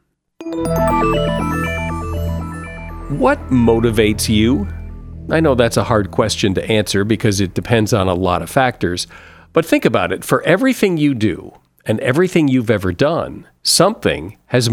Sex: male